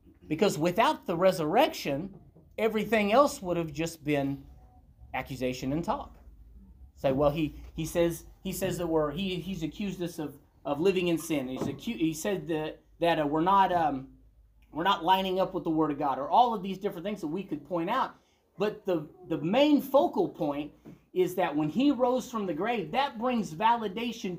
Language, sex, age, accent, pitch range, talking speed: English, male, 30-49, American, 145-205 Hz, 190 wpm